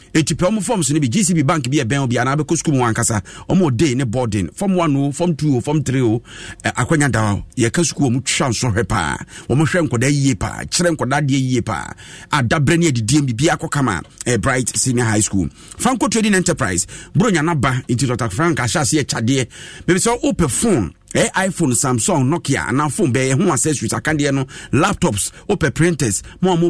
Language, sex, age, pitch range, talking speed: English, male, 50-69, 120-165 Hz, 185 wpm